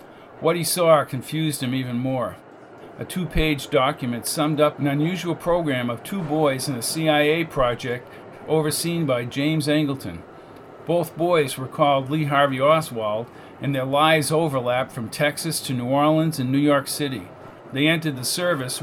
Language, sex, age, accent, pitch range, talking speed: English, male, 50-69, American, 130-155 Hz, 160 wpm